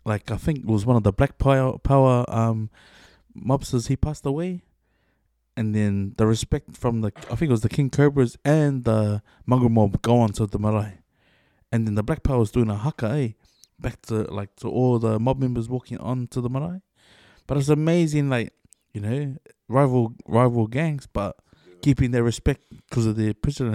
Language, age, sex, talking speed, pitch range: English, 20-39, male, 195 wpm, 105-130 Hz